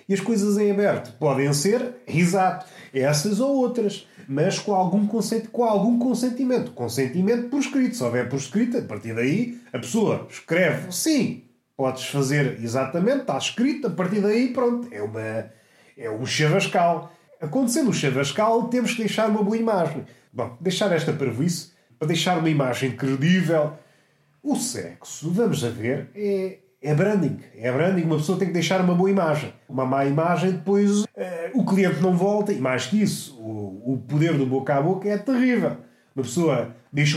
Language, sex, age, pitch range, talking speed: Portuguese, male, 30-49, 135-210 Hz, 170 wpm